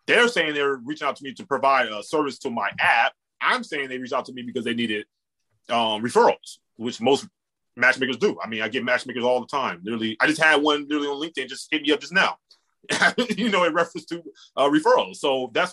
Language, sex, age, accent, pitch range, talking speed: English, male, 30-49, American, 125-210 Hz, 235 wpm